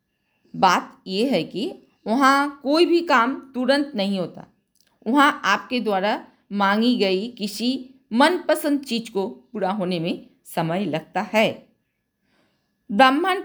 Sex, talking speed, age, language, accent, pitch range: female, 120 wpm, 50-69, Hindi, native, 200-275 Hz